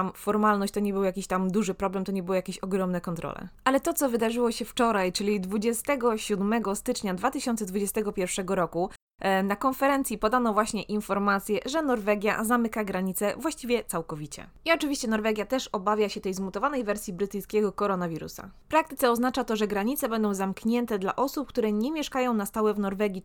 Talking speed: 165 wpm